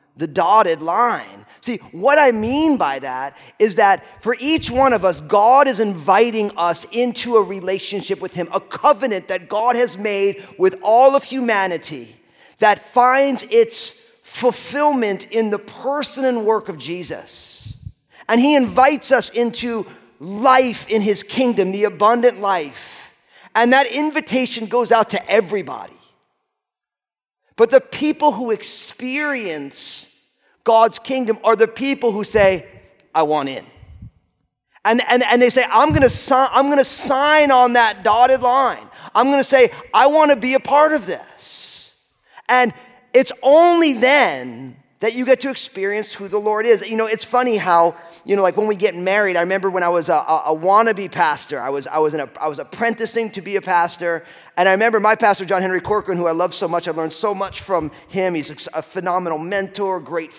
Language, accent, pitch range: English, American, 170-250 Hz